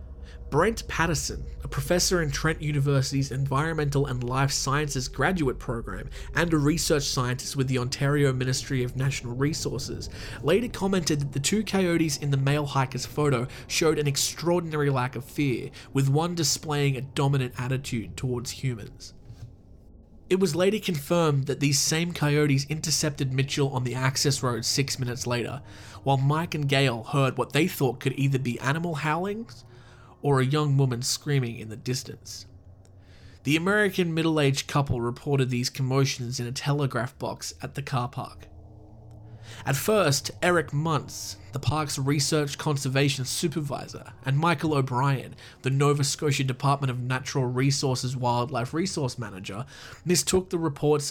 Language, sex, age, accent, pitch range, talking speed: English, male, 20-39, Australian, 120-145 Hz, 150 wpm